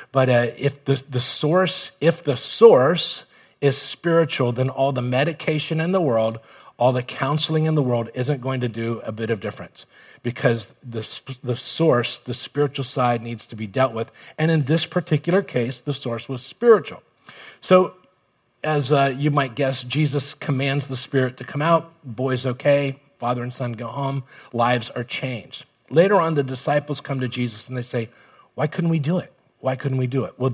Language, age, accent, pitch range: English, 40-59, American, 120-145 Hz